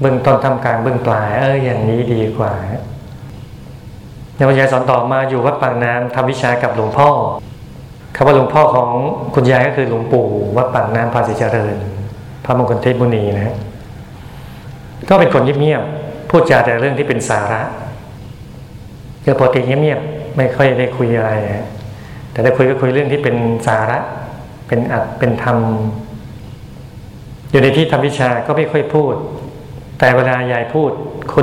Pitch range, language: 115-130 Hz, Thai